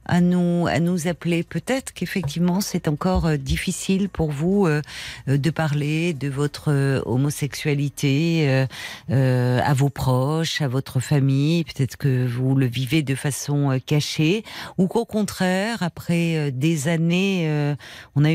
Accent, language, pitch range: French, French, 140-170 Hz